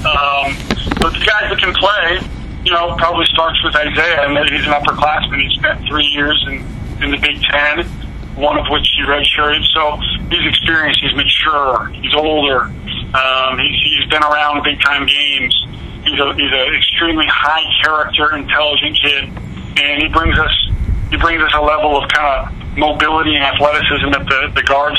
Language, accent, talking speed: English, American, 185 wpm